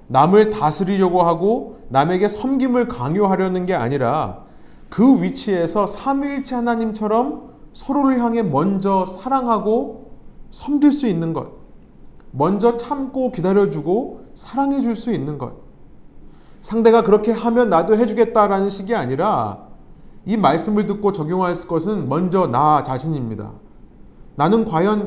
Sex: male